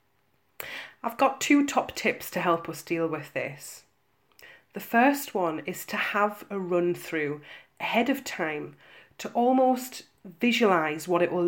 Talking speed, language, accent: 150 wpm, English, British